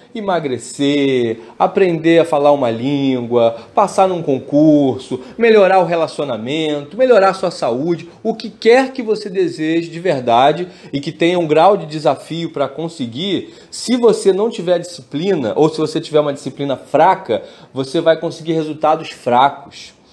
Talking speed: 150 wpm